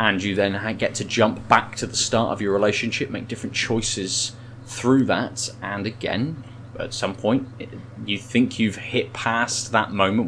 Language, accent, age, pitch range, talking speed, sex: English, British, 20-39, 110-125 Hz, 175 wpm, male